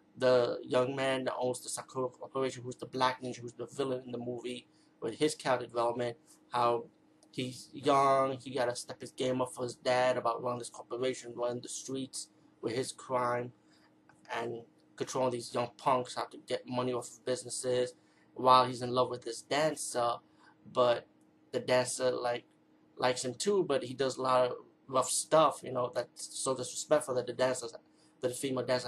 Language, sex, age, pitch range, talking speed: English, male, 20-39, 120-130 Hz, 185 wpm